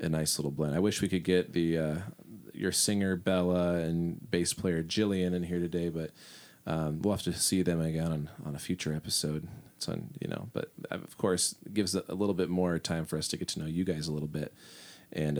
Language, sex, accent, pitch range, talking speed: English, male, American, 80-100 Hz, 235 wpm